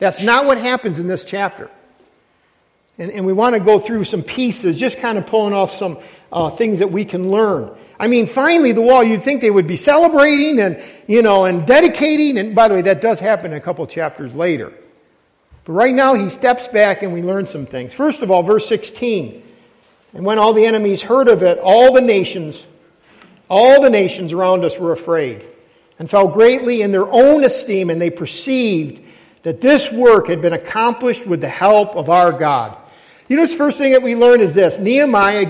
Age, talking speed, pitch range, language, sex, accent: 50-69, 205 wpm, 185-255 Hz, English, male, American